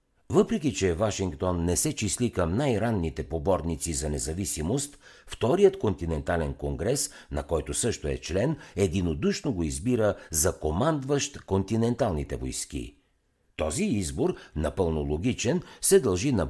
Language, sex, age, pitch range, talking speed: Bulgarian, male, 60-79, 80-130 Hz, 120 wpm